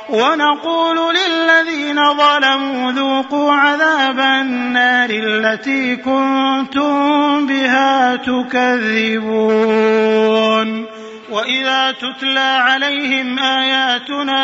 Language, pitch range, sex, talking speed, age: Arabic, 245-285 Hz, male, 60 wpm, 30-49